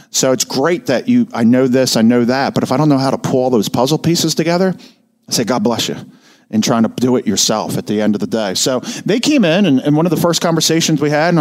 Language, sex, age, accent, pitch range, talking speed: English, male, 40-59, American, 120-165 Hz, 290 wpm